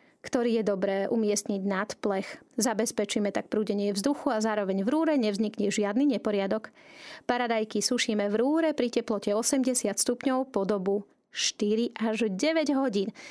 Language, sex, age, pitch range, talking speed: Slovak, female, 30-49, 210-240 Hz, 140 wpm